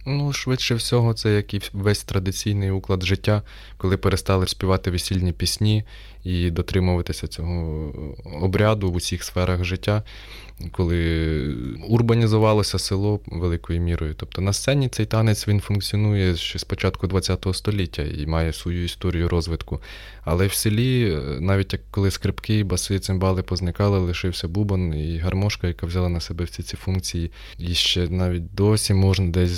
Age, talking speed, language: 20-39, 145 wpm, Ukrainian